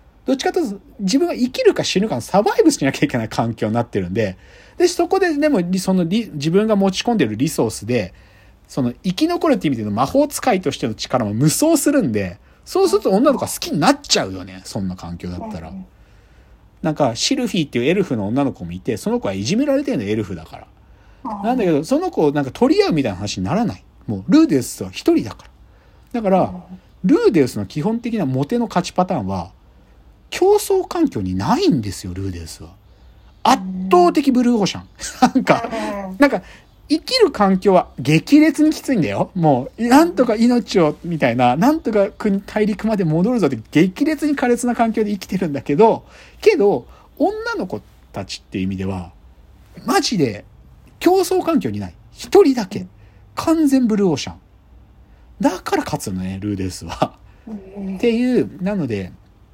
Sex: male